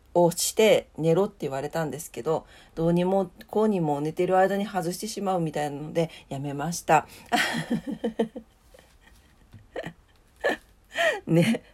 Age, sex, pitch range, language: 40-59, female, 165-220 Hz, Japanese